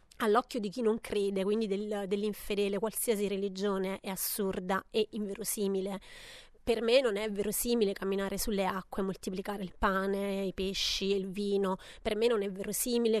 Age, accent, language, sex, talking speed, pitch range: 30-49, native, Italian, female, 160 wpm, 200-225 Hz